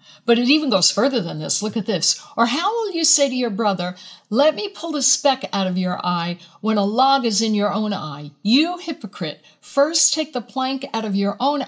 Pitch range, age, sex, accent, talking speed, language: 190-260 Hz, 60-79, female, American, 230 wpm, English